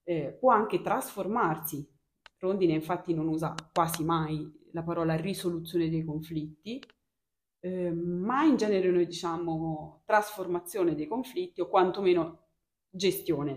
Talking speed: 120 wpm